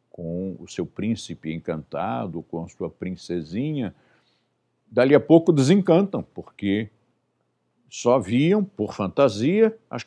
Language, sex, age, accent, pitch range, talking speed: Portuguese, male, 60-79, Brazilian, 95-145 Hz, 115 wpm